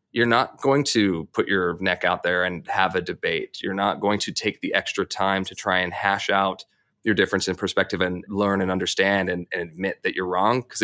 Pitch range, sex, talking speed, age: 95-105 Hz, male, 225 wpm, 20-39